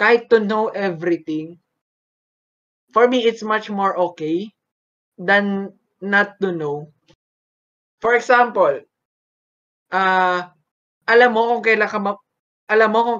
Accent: native